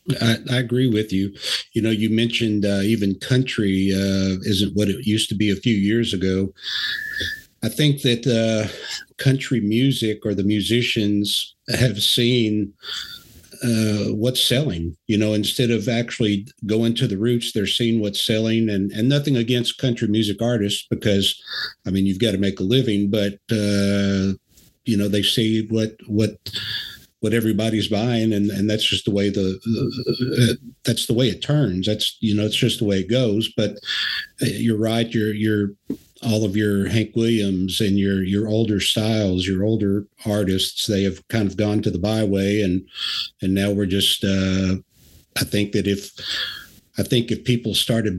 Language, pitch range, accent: English, 100-115 Hz, American